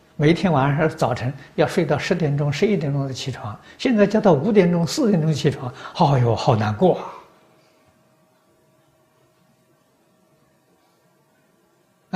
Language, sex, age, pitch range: Chinese, male, 60-79, 125-185 Hz